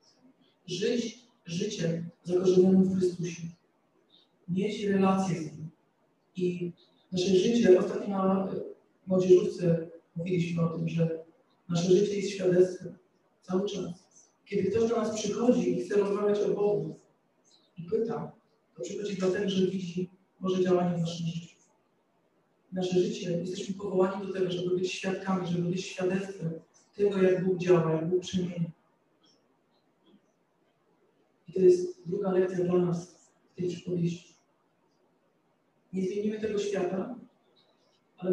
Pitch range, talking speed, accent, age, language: 180-200 Hz, 125 wpm, native, 40-59, Polish